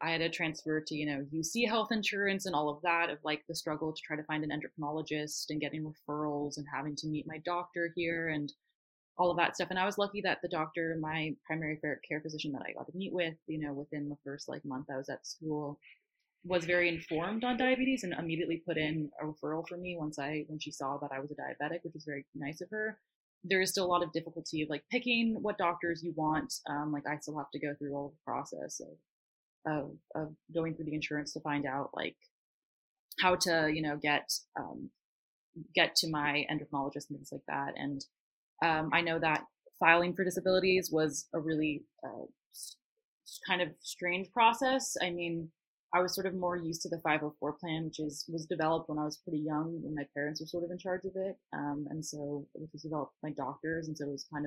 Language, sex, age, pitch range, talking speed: English, female, 20-39, 150-175 Hz, 225 wpm